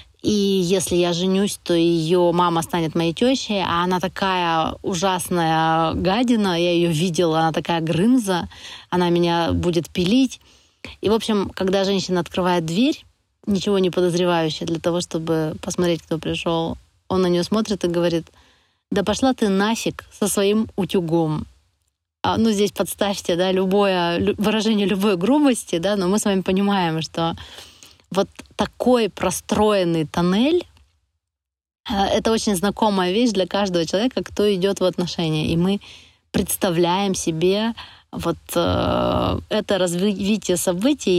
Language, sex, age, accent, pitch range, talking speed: Russian, female, 20-39, native, 170-205 Hz, 135 wpm